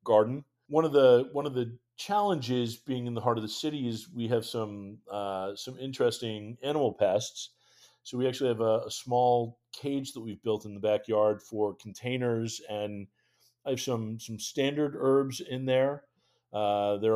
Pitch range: 110-130 Hz